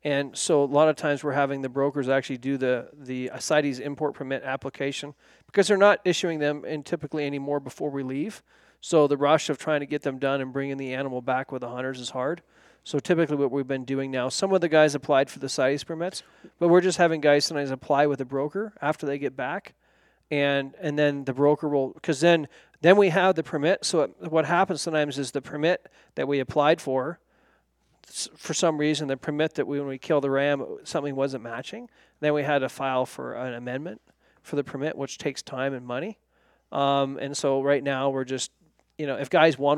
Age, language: 40-59, English